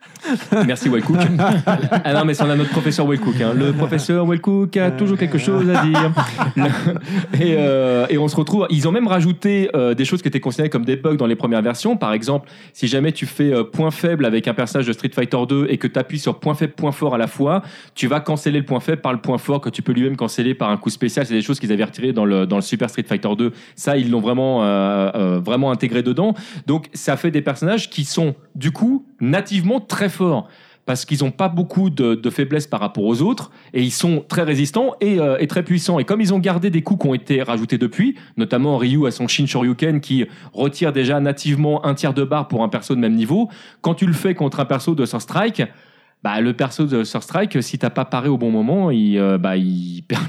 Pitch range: 125-175 Hz